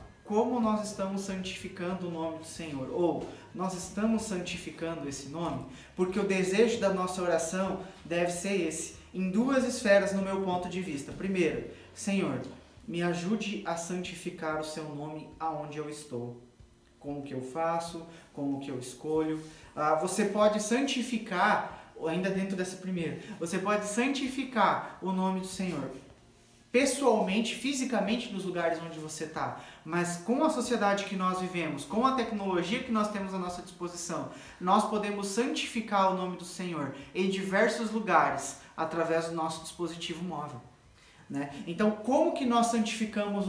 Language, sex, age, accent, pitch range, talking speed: Portuguese, male, 20-39, Brazilian, 165-210 Hz, 155 wpm